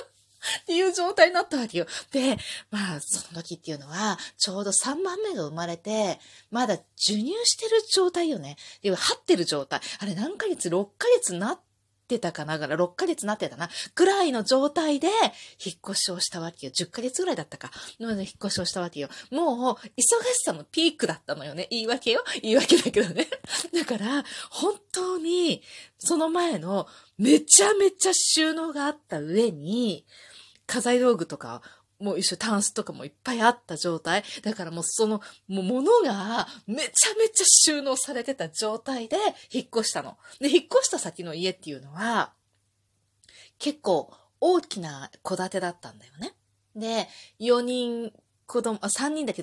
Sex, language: female, Japanese